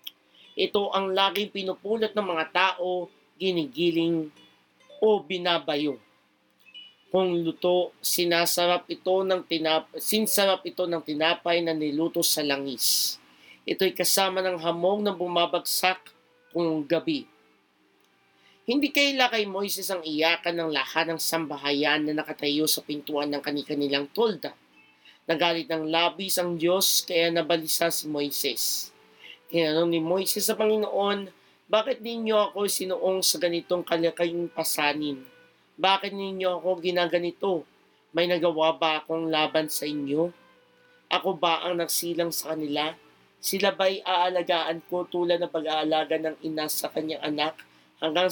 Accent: native